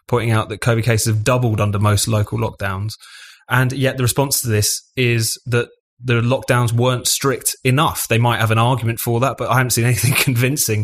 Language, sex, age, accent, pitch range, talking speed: English, male, 20-39, British, 105-125 Hz, 205 wpm